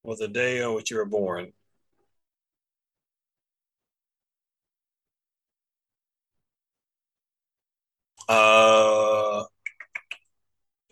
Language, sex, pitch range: English, male, 105-130 Hz